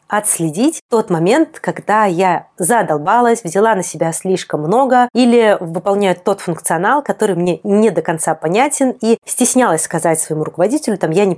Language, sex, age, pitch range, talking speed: Russian, female, 20-39, 175-230 Hz, 155 wpm